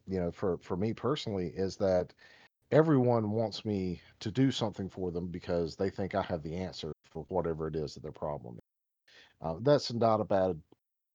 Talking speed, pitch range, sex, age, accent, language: 195 wpm, 90-120 Hz, male, 40-59, American, English